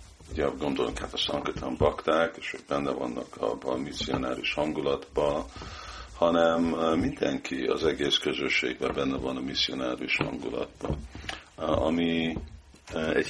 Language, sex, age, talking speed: Hungarian, male, 50-69, 115 wpm